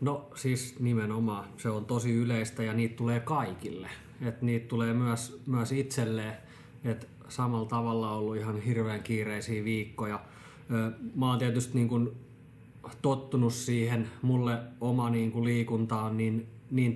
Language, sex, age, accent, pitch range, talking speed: Finnish, male, 20-39, native, 110-125 Hz, 140 wpm